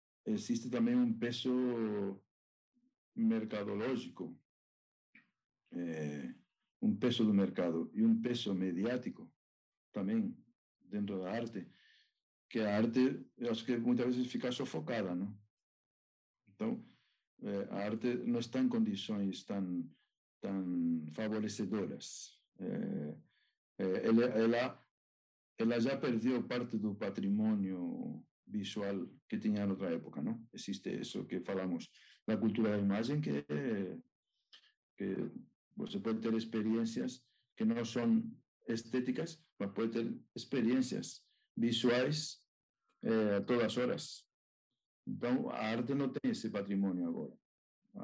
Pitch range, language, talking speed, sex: 100-130 Hz, Portuguese, 105 wpm, male